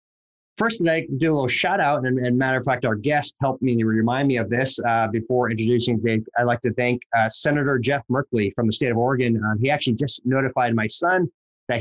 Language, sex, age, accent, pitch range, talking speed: English, male, 30-49, American, 115-145 Hz, 230 wpm